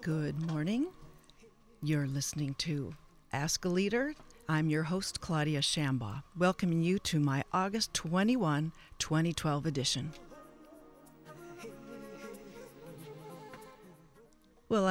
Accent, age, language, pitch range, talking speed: American, 50-69, English, 160-210 Hz, 90 wpm